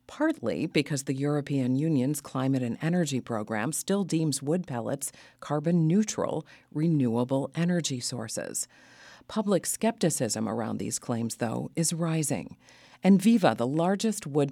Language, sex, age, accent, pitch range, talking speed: English, female, 40-59, American, 125-170 Hz, 125 wpm